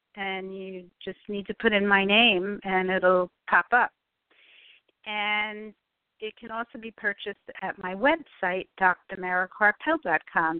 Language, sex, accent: English, female, American